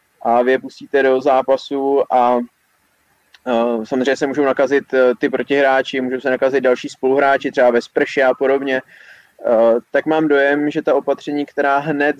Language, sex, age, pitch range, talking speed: Czech, male, 20-39, 135-160 Hz, 165 wpm